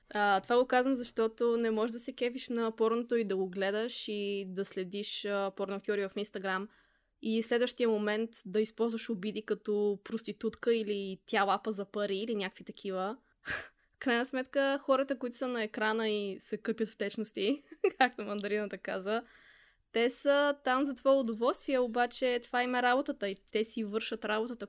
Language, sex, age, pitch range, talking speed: Bulgarian, female, 20-39, 200-235 Hz, 170 wpm